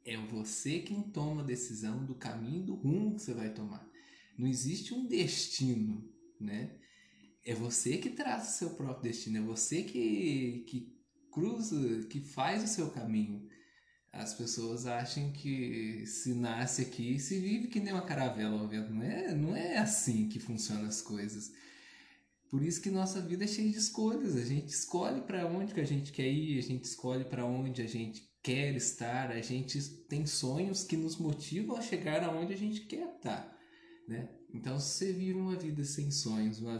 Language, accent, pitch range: Portuguese, Brazilian, 120-190 Hz